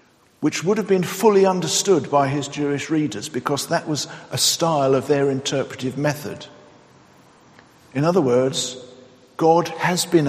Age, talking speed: 50-69, 145 wpm